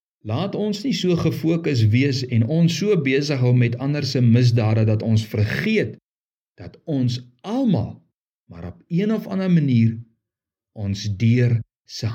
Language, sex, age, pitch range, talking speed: Dutch, male, 50-69, 110-160 Hz, 150 wpm